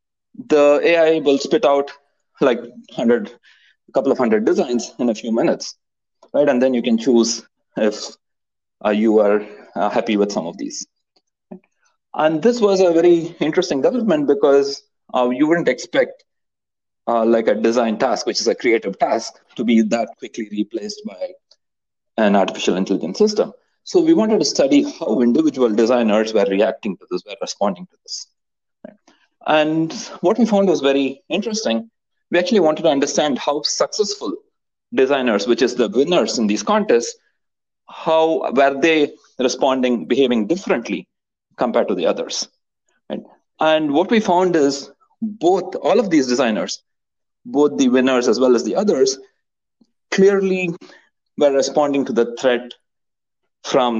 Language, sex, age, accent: English, male, 30-49, Indian